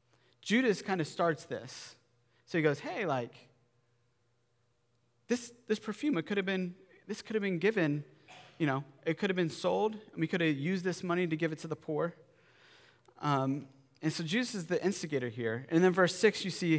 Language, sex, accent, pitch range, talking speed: English, male, American, 130-175 Hz, 200 wpm